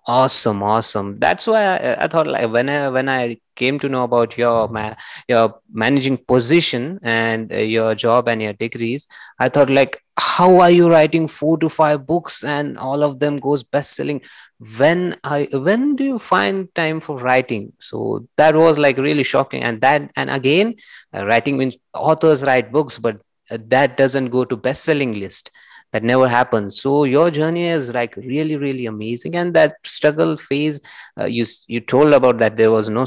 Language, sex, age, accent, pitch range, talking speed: English, male, 20-39, Indian, 115-140 Hz, 185 wpm